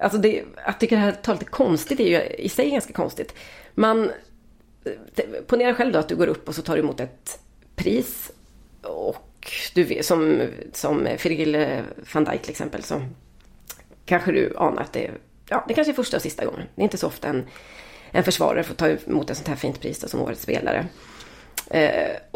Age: 30-49